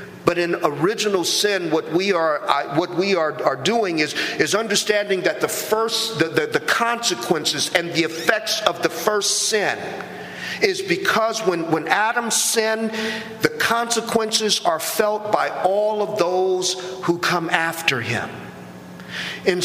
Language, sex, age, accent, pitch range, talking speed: English, male, 50-69, American, 165-215 Hz, 150 wpm